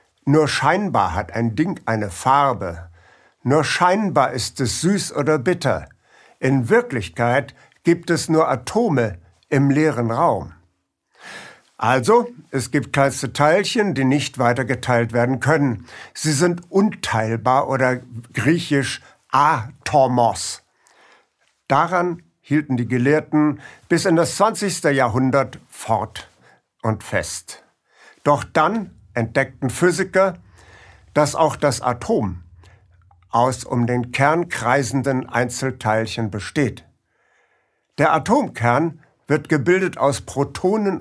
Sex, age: male, 60-79